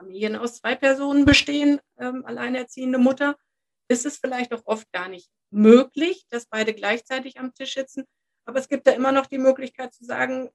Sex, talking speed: female, 180 wpm